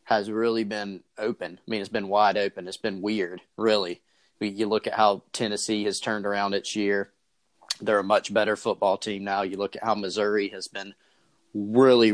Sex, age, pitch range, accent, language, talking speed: male, 30-49, 100-115 Hz, American, English, 195 wpm